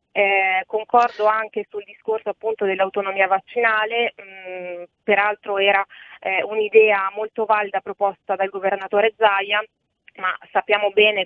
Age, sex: 20-39, female